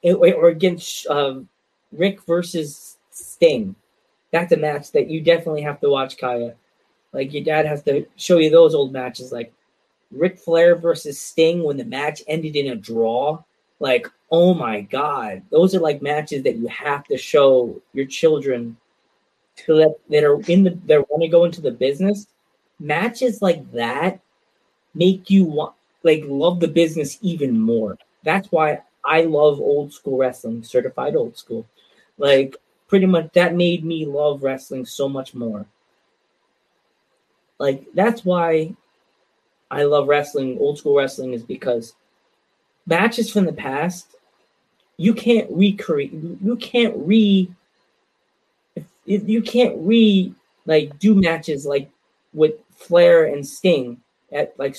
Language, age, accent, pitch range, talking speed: English, 20-39, American, 140-190 Hz, 145 wpm